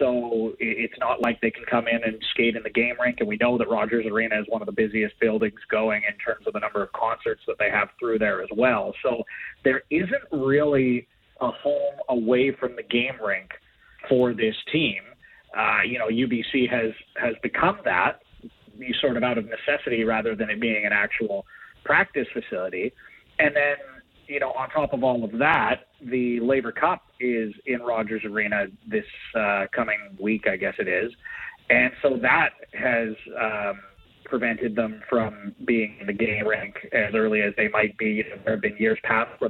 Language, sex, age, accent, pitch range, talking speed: English, male, 30-49, American, 115-130 Hz, 195 wpm